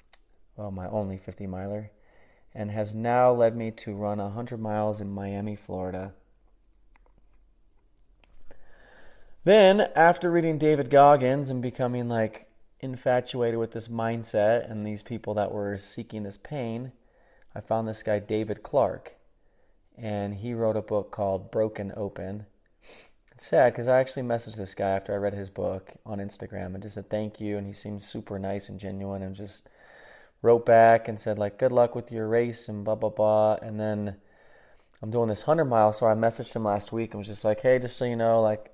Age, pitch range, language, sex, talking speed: 30-49, 100-115 Hz, English, male, 180 wpm